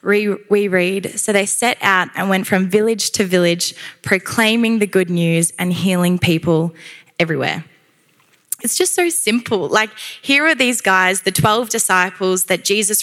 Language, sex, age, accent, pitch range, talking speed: English, female, 20-39, Australian, 180-215 Hz, 155 wpm